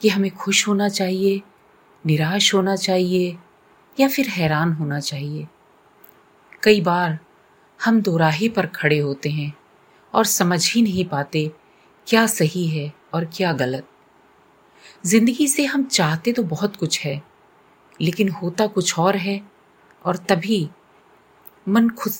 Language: Hindi